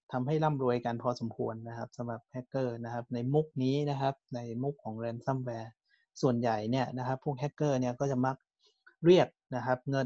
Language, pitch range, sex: Thai, 120-150 Hz, male